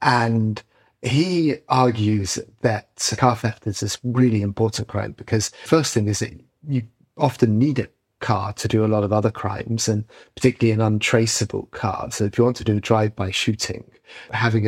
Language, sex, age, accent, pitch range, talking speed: English, male, 30-49, British, 105-125 Hz, 175 wpm